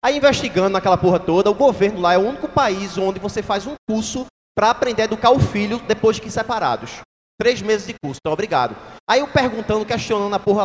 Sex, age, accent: male, 20-39, Brazilian